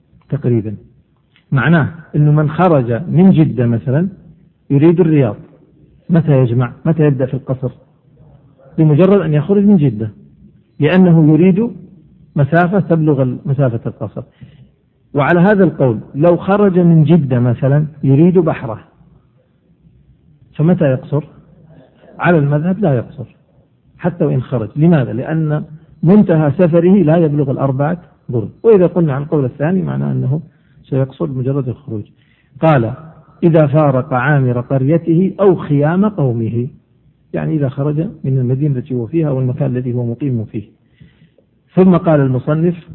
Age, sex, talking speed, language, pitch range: 50-69, male, 120 wpm, Arabic, 135-170 Hz